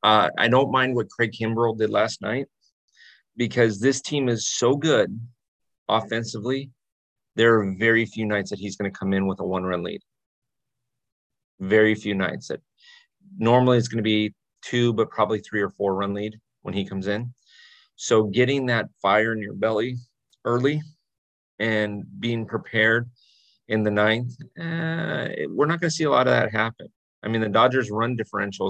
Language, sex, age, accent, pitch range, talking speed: English, male, 30-49, American, 100-120 Hz, 180 wpm